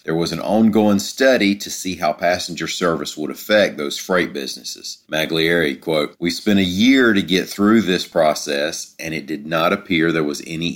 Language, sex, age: English, male, 40-59